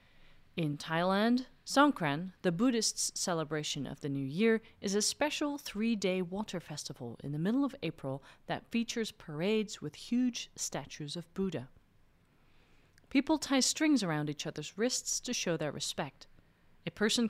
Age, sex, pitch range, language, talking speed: 30-49, female, 150-230 Hz, English, 145 wpm